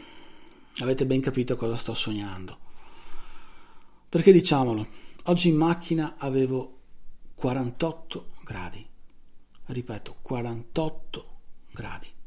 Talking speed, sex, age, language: 85 wpm, male, 50-69, Italian